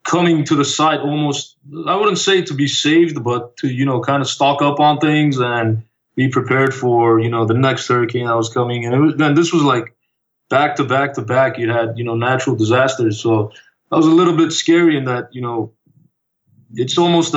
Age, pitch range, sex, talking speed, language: 20-39, 120-145 Hz, male, 215 wpm, English